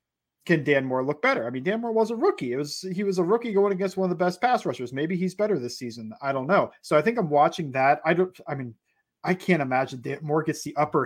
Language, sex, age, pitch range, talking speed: English, male, 30-49, 135-180 Hz, 280 wpm